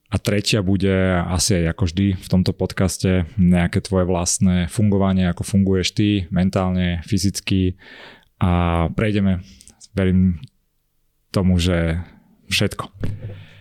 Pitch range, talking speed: 95-110 Hz, 110 wpm